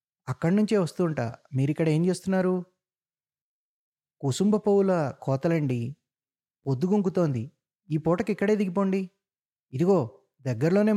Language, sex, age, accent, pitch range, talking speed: Telugu, male, 20-39, native, 130-170 Hz, 80 wpm